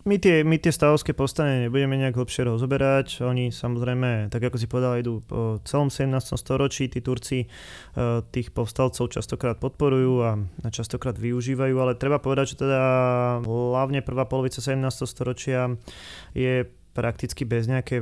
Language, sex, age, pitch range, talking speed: Slovak, male, 20-39, 120-135 Hz, 145 wpm